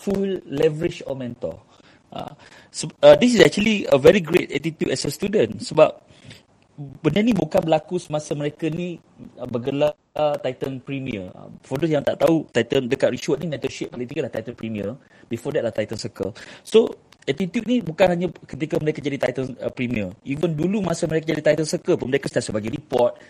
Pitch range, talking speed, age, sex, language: 125-180 Hz, 195 wpm, 30-49, male, Malay